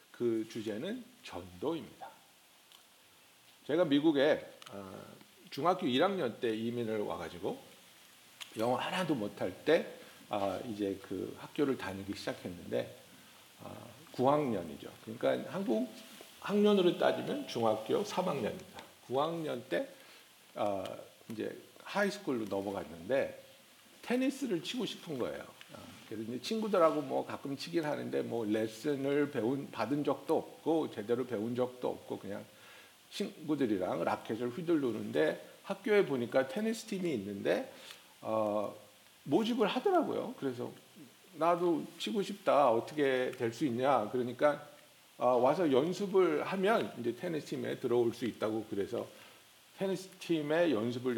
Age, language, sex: 60-79, Korean, male